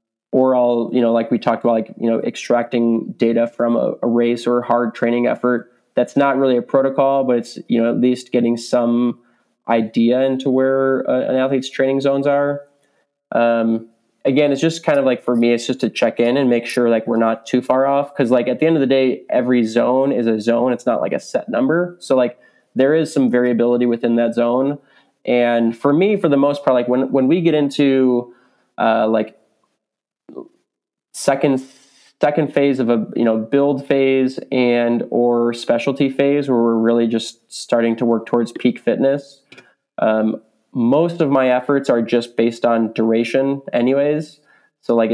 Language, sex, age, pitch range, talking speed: English, male, 20-39, 115-135 Hz, 195 wpm